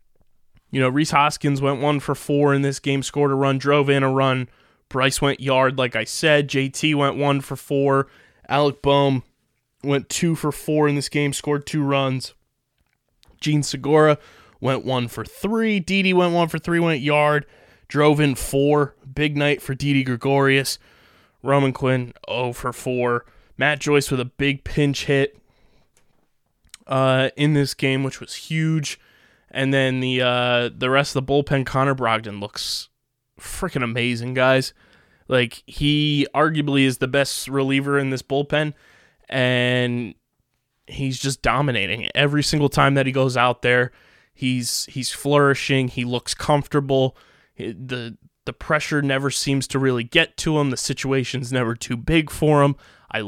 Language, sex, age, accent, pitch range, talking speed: English, male, 20-39, American, 130-145 Hz, 160 wpm